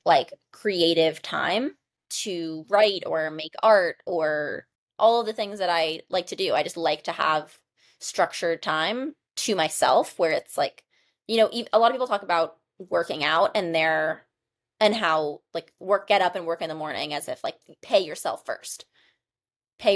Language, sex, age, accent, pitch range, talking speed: English, female, 20-39, American, 160-200 Hz, 180 wpm